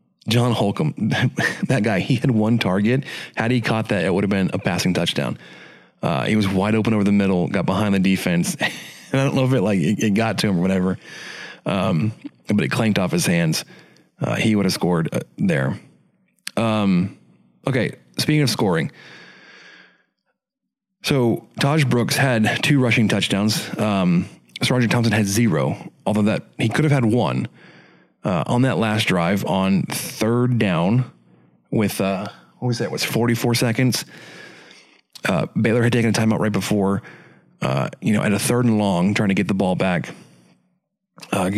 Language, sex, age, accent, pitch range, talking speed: English, male, 30-49, American, 100-130 Hz, 175 wpm